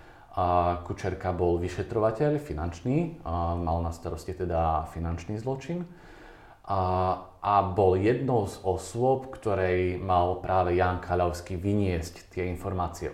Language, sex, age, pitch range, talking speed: Slovak, male, 30-49, 85-100 Hz, 120 wpm